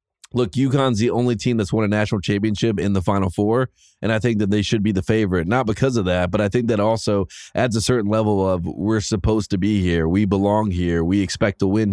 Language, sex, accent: English, male, American